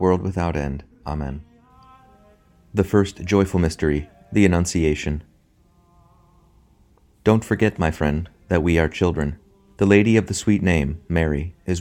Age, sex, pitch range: 30-49, male, 80-95 Hz